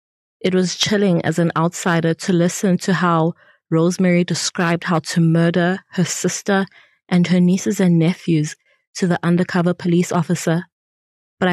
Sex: female